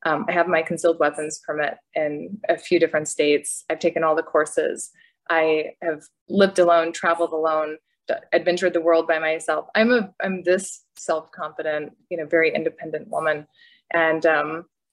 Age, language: 20-39, English